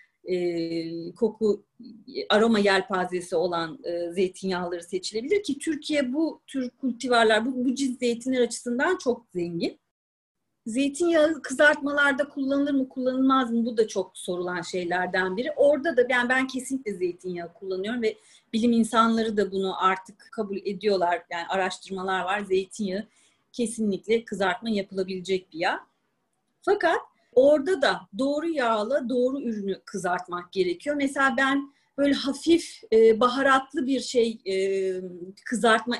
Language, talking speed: Turkish, 125 wpm